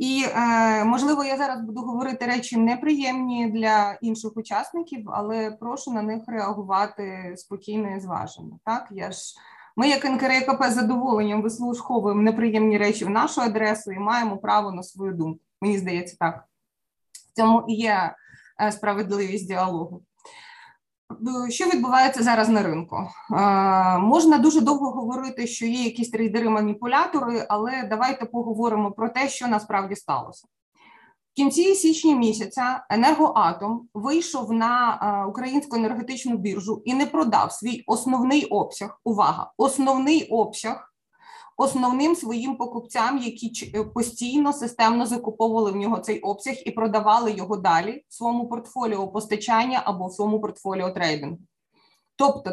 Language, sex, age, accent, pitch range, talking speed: Ukrainian, female, 20-39, native, 215-260 Hz, 125 wpm